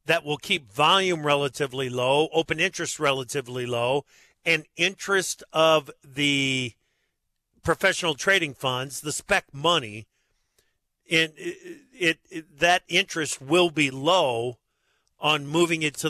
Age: 50-69